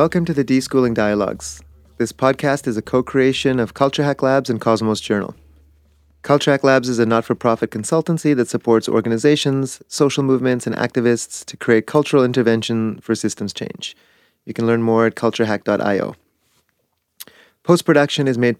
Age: 30-49